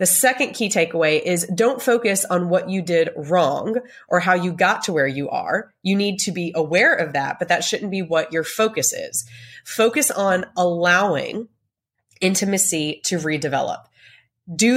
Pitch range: 160-205 Hz